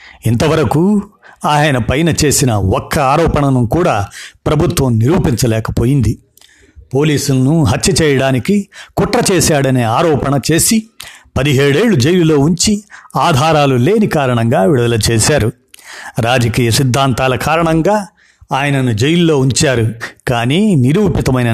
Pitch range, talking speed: 125-165 Hz, 90 wpm